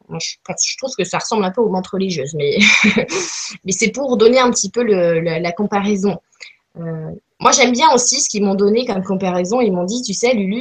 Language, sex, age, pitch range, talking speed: French, female, 20-39, 185-230 Hz, 225 wpm